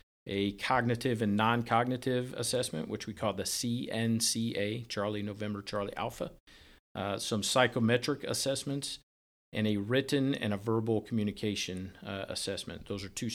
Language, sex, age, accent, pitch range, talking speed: English, male, 50-69, American, 100-120 Hz, 135 wpm